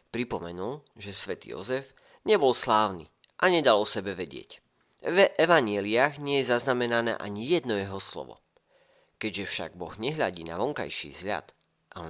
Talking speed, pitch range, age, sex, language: 145 wpm, 95-125 Hz, 40-59, male, Slovak